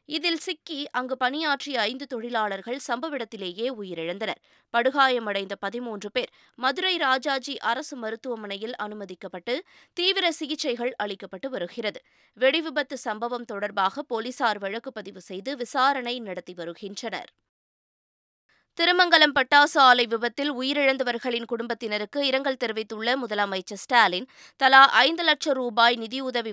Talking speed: 105 wpm